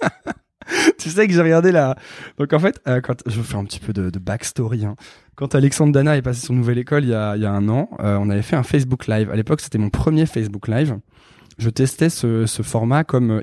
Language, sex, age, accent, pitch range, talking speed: French, male, 20-39, French, 115-155 Hz, 255 wpm